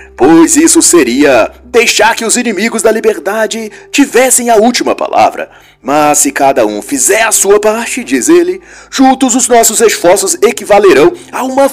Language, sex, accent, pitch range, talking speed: Portuguese, male, Brazilian, 200-335 Hz, 155 wpm